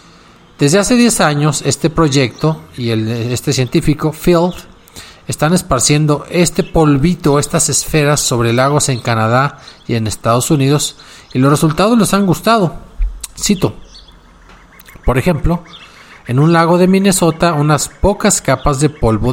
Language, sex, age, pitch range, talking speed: Spanish, male, 40-59, 125-175 Hz, 135 wpm